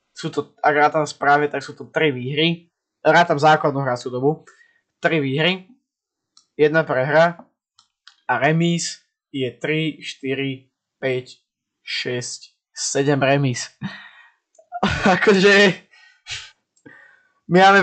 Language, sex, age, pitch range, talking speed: Slovak, male, 20-39, 145-180 Hz, 110 wpm